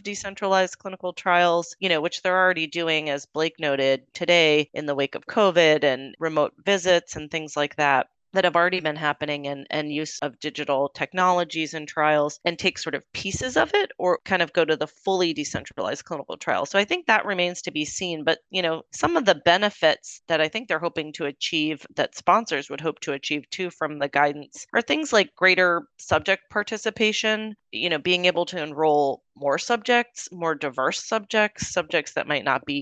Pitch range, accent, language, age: 150-185 Hz, American, English, 30-49